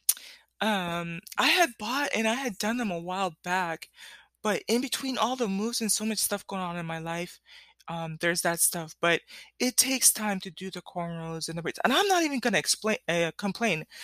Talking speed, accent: 215 wpm, American